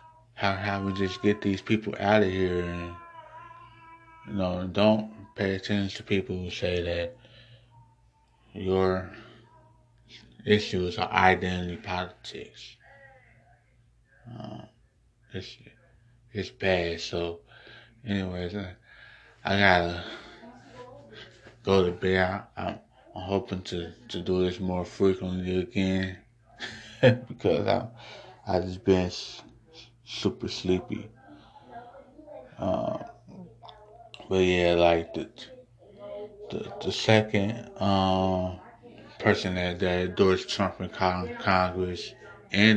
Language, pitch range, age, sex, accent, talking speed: English, 90-115 Hz, 20-39, male, American, 100 wpm